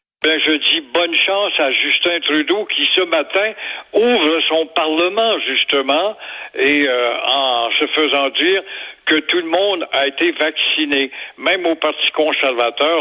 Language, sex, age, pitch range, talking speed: French, male, 60-79, 140-200 Hz, 150 wpm